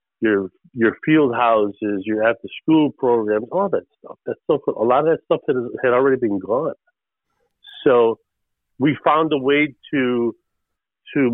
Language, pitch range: English, 110-145 Hz